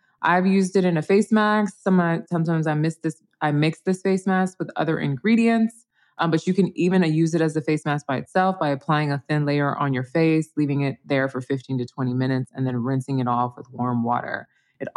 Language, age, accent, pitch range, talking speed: English, 20-39, American, 140-165 Hz, 220 wpm